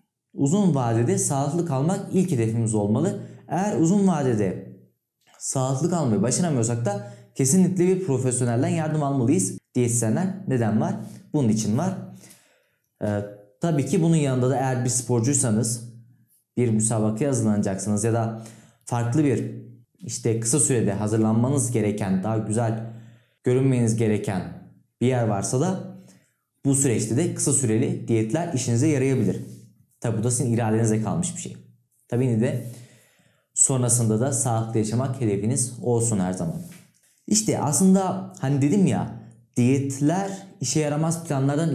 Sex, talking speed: male, 130 wpm